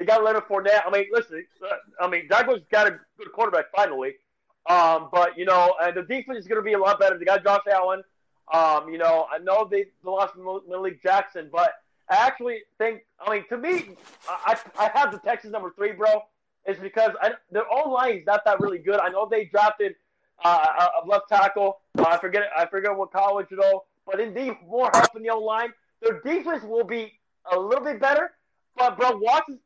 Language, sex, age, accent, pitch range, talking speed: English, male, 30-49, American, 195-250 Hz, 215 wpm